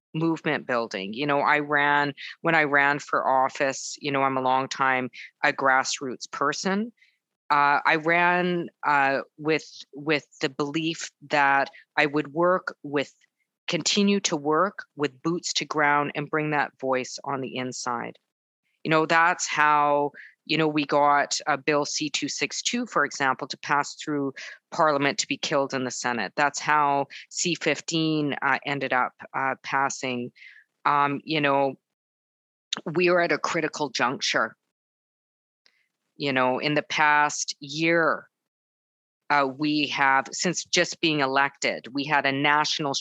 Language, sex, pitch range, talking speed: English, female, 135-155 Hz, 150 wpm